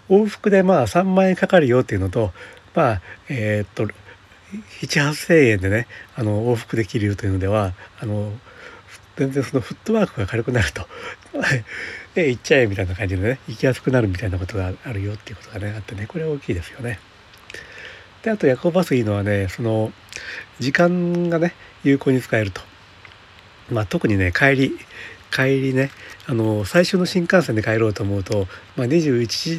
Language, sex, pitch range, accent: Japanese, male, 100-130 Hz, native